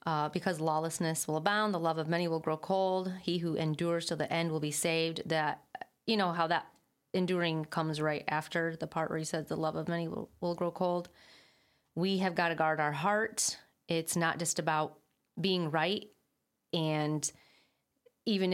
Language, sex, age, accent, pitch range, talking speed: English, female, 30-49, American, 155-180 Hz, 190 wpm